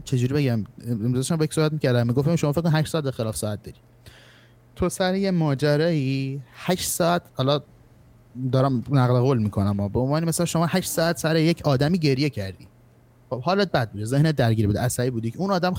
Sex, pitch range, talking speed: male, 120-160 Hz, 190 wpm